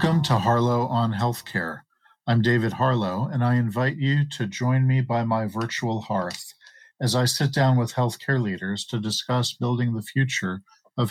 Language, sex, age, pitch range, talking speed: English, male, 50-69, 105-130 Hz, 175 wpm